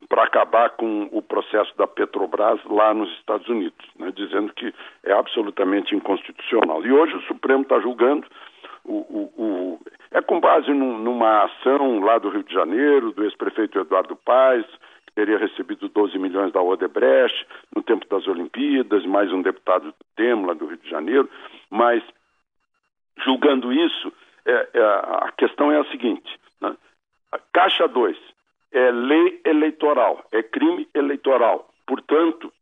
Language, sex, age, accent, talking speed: Portuguese, male, 60-79, Brazilian, 140 wpm